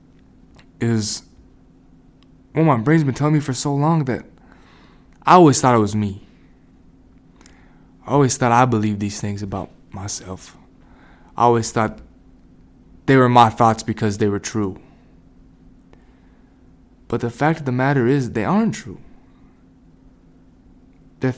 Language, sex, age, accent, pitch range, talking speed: English, male, 20-39, American, 105-140 Hz, 140 wpm